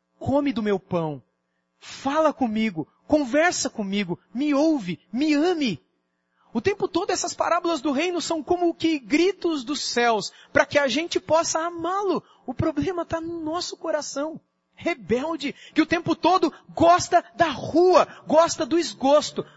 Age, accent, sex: 30-49, Brazilian, male